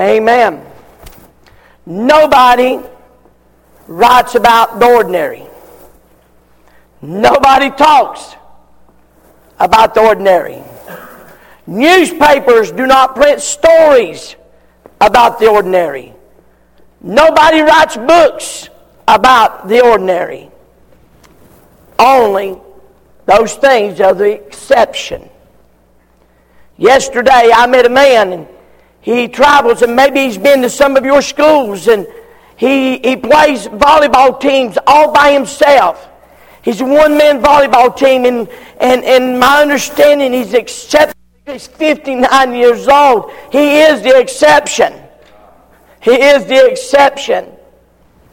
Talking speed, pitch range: 100 wpm, 235-295 Hz